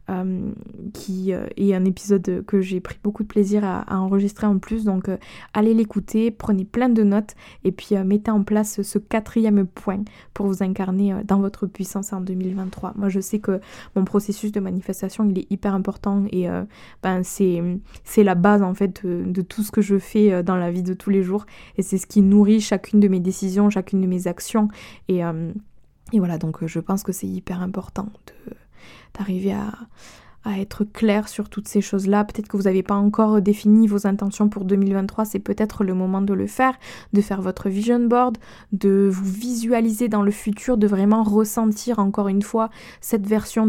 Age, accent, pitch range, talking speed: 20-39, French, 190-215 Hz, 205 wpm